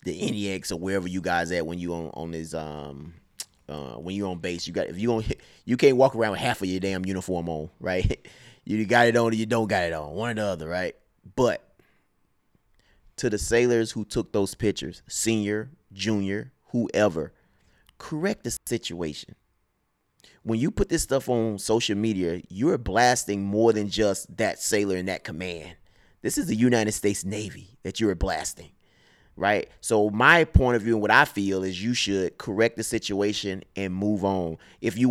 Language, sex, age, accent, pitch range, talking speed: English, male, 30-49, American, 95-115 Hz, 195 wpm